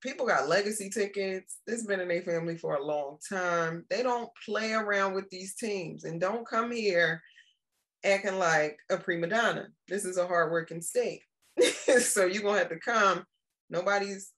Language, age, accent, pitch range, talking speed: English, 20-39, American, 175-225 Hz, 180 wpm